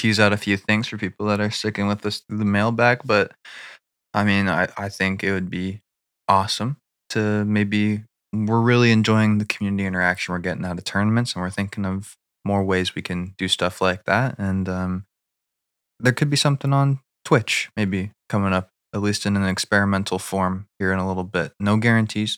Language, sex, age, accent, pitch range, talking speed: English, male, 20-39, American, 95-115 Hz, 200 wpm